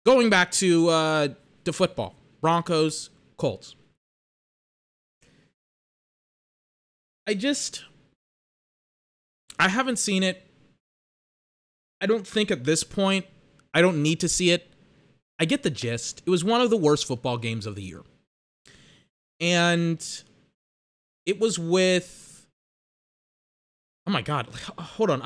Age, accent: 20-39, American